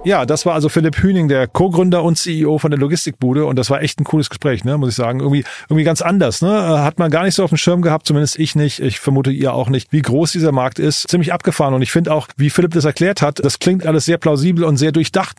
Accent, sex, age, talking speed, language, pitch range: German, male, 30-49, 275 wpm, German, 140-165 Hz